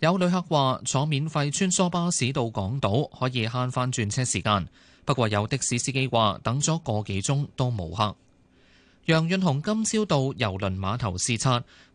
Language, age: Chinese, 20-39